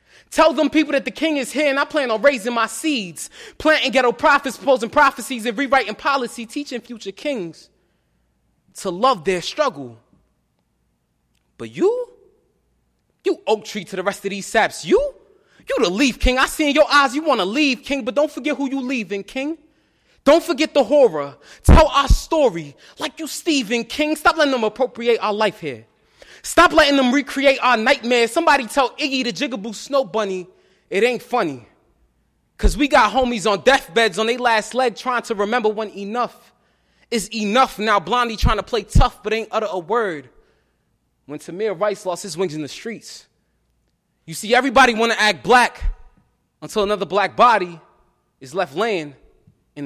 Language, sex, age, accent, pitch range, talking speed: English, male, 20-39, American, 205-285 Hz, 180 wpm